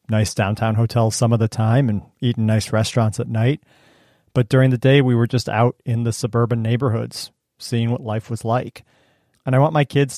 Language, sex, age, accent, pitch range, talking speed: English, male, 40-59, American, 115-130 Hz, 205 wpm